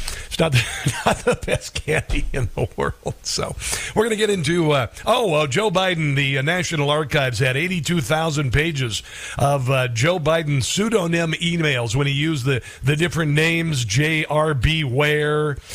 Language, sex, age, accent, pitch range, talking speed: English, male, 50-69, American, 130-160 Hz, 160 wpm